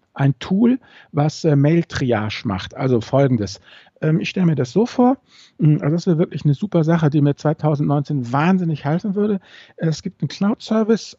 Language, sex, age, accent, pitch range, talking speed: German, male, 50-69, German, 125-155 Hz, 170 wpm